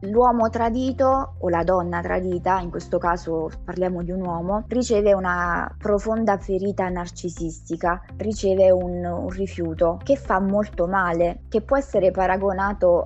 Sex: female